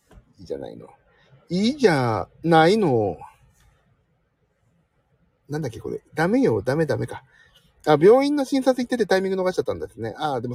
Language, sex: Japanese, male